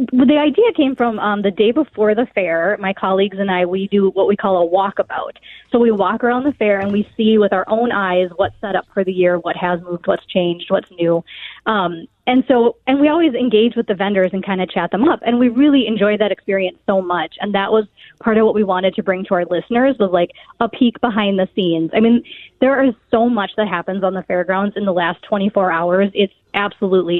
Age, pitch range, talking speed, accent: 20-39, 185-230 Hz, 240 wpm, American